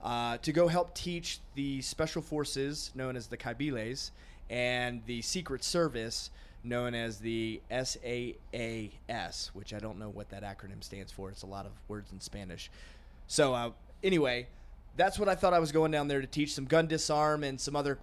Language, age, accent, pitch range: English, 30-49, American, 115-150 Hz